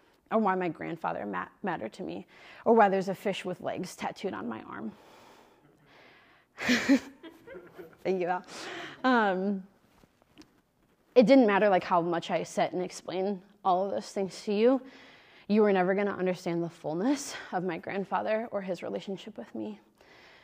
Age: 20-39